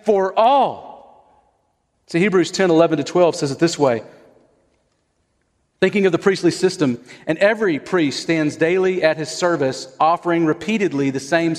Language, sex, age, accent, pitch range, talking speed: English, male, 40-59, American, 135-180 Hz, 150 wpm